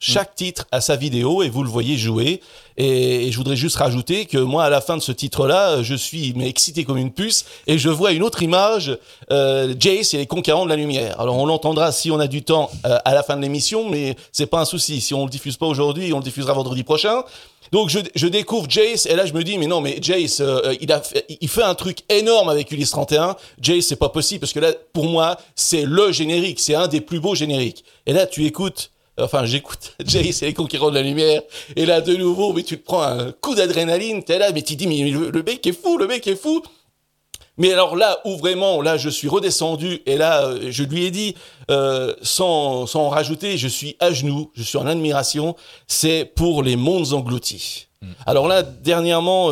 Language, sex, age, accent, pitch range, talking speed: French, male, 30-49, French, 140-180 Hz, 240 wpm